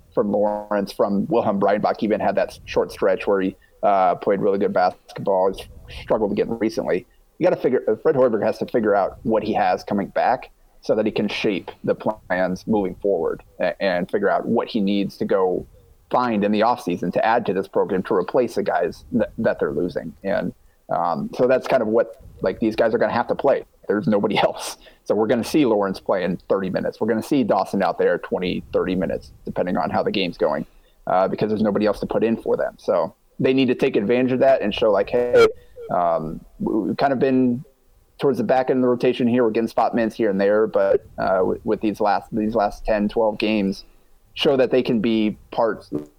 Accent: American